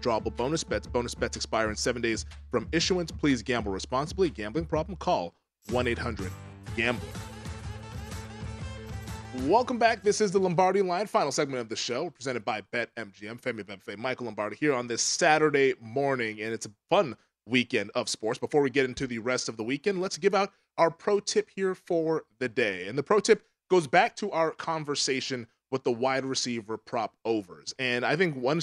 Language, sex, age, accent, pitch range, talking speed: English, male, 30-49, American, 115-175 Hz, 185 wpm